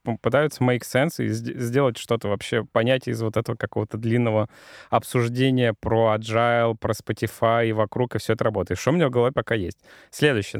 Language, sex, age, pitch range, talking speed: Russian, male, 20-39, 115-140 Hz, 180 wpm